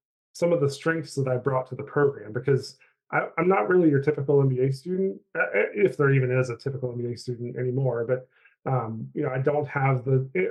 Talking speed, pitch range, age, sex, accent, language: 205 wpm, 125-150 Hz, 30-49, male, American, English